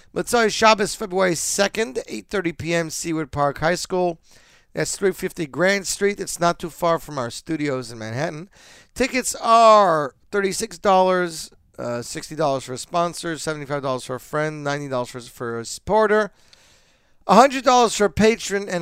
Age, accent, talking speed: 50-69, American, 140 wpm